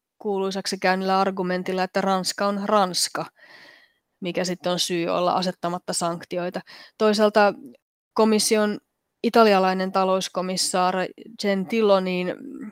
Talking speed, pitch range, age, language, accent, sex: 90 wpm, 185-220 Hz, 20-39, Finnish, native, female